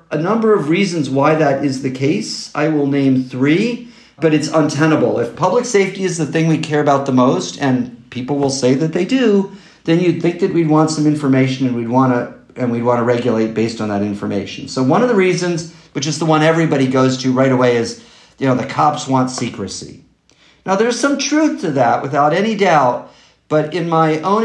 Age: 50-69